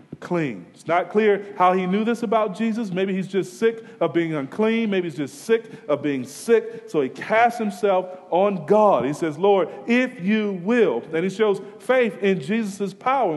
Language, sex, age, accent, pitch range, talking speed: English, male, 40-59, American, 155-225 Hz, 190 wpm